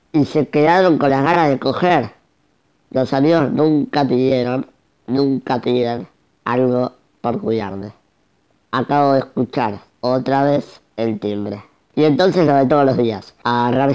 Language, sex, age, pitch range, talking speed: Spanish, male, 20-39, 115-140 Hz, 140 wpm